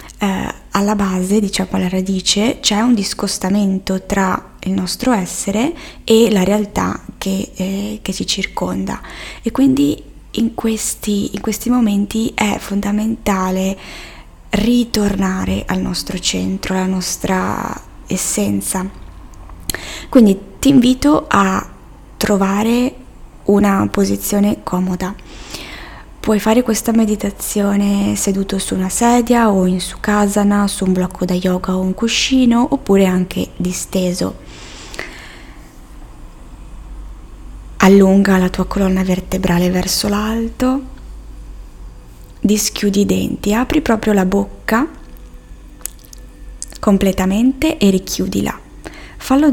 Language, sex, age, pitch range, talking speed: Italian, female, 20-39, 185-220 Hz, 105 wpm